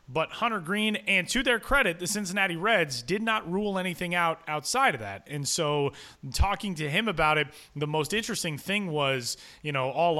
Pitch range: 145-180 Hz